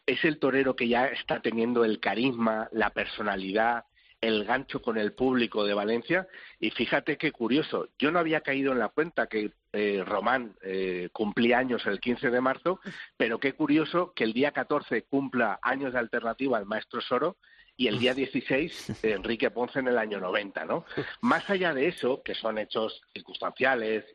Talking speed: 175 wpm